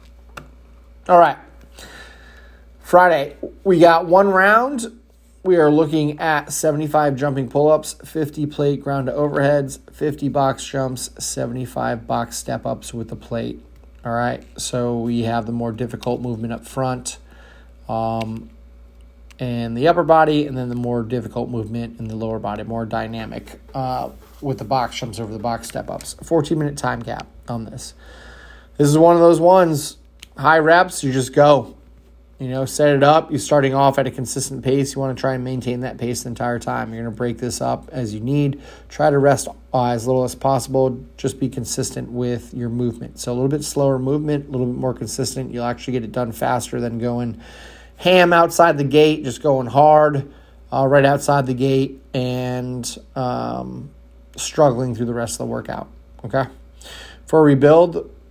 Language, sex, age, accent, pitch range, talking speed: English, male, 30-49, American, 115-145 Hz, 175 wpm